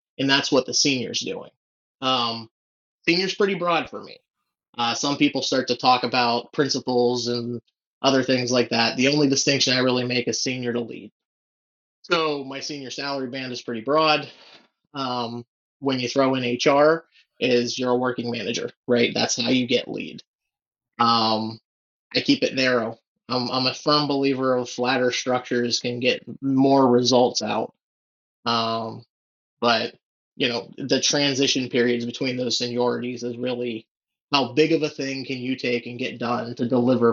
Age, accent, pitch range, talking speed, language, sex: 30-49, American, 120-135 Hz, 170 wpm, English, male